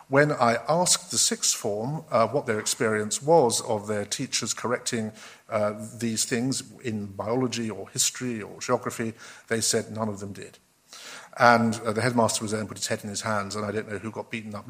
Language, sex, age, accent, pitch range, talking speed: English, male, 50-69, British, 110-135 Hz, 210 wpm